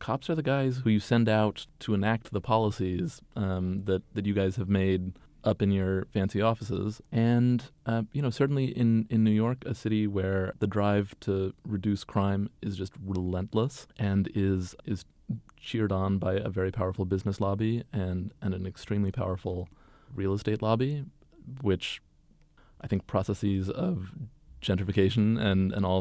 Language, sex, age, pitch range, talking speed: English, male, 30-49, 95-110 Hz, 165 wpm